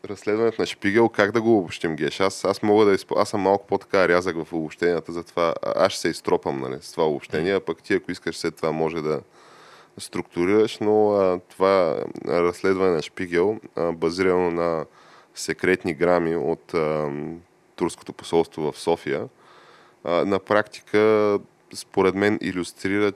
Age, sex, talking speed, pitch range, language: 20-39, male, 145 wpm, 85-95 Hz, Bulgarian